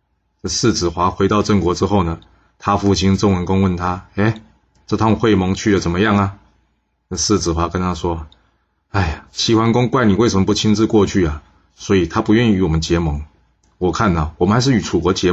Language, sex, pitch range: Chinese, male, 80-100 Hz